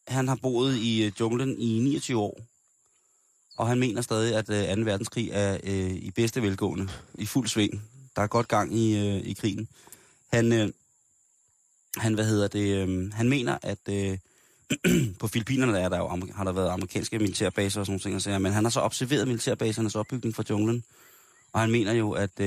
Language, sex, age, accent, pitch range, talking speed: Danish, male, 20-39, native, 100-120 Hz, 185 wpm